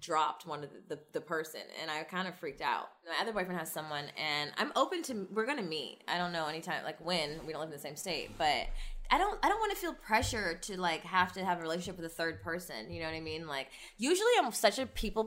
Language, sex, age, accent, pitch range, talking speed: English, female, 20-39, American, 170-280 Hz, 270 wpm